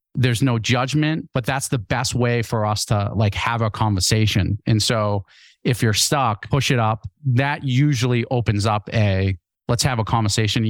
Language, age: English, 30-49